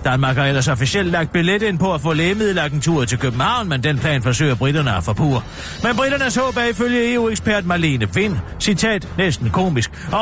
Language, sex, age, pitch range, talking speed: Danish, male, 40-59, 125-195 Hz, 180 wpm